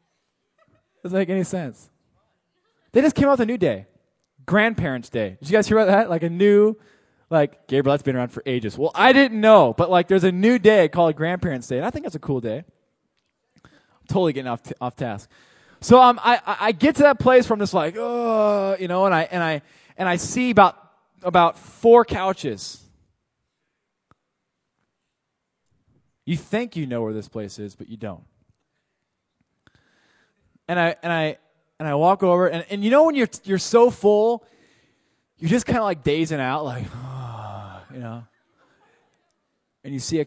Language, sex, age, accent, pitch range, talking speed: English, male, 20-39, American, 155-210 Hz, 185 wpm